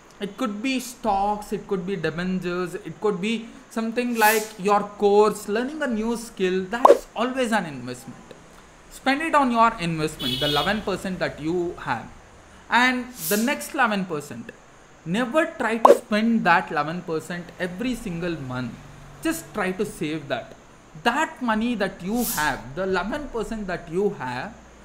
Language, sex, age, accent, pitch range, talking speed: English, male, 20-39, Indian, 160-225 Hz, 150 wpm